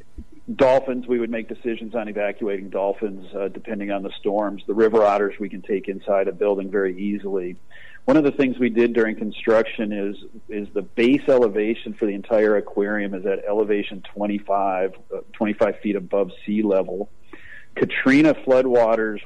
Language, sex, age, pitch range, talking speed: English, male, 40-59, 100-115 Hz, 165 wpm